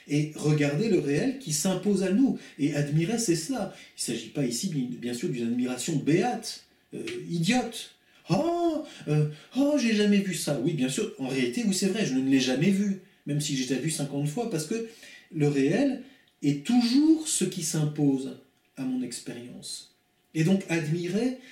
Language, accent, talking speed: French, French, 190 wpm